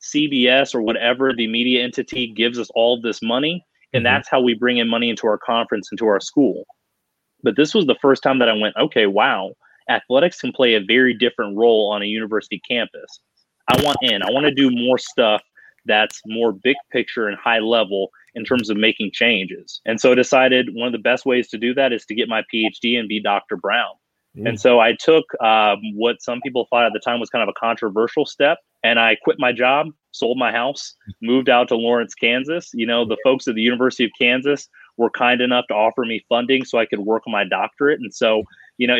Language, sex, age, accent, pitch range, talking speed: English, male, 30-49, American, 110-130 Hz, 225 wpm